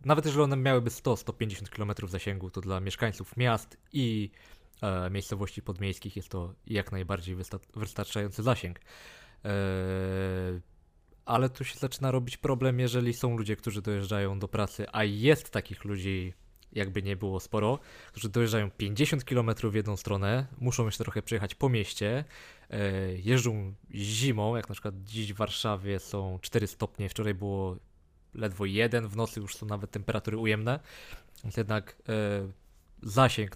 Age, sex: 20-39, male